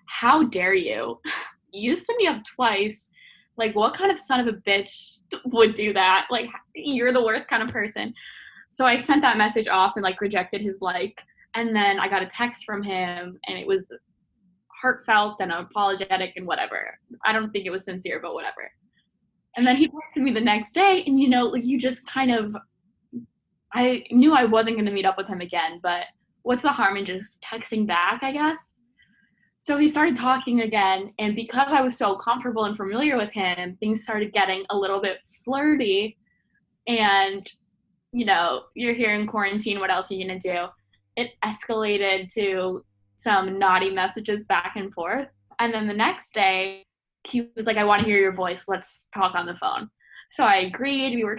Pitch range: 195-245 Hz